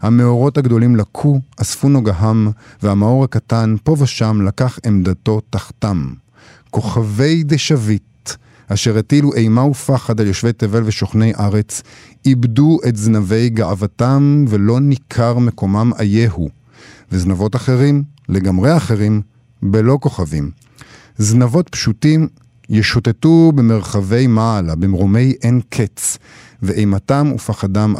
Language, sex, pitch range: Hebrew, male, 110-135 Hz